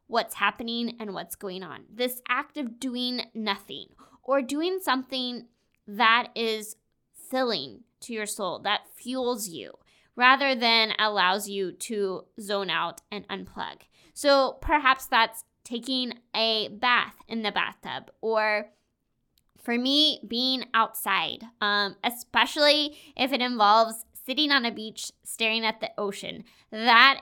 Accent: American